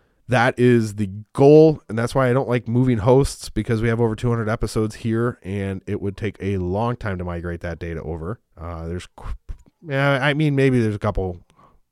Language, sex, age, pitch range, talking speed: English, male, 30-49, 90-120 Hz, 200 wpm